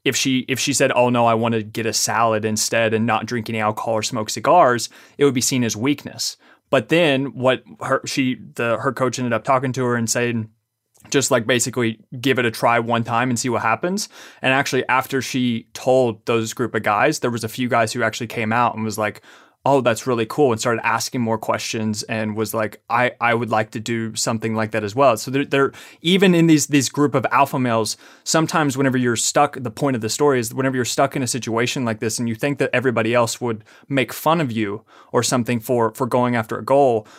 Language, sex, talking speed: English, male, 240 wpm